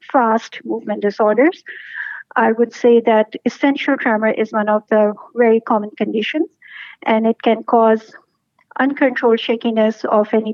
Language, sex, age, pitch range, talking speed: English, female, 50-69, 220-255 Hz, 135 wpm